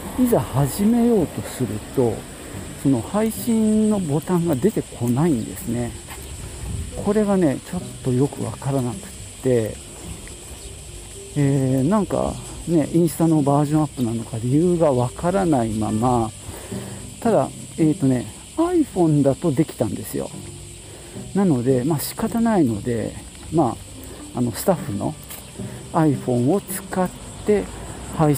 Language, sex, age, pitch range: Japanese, male, 50-69, 115-165 Hz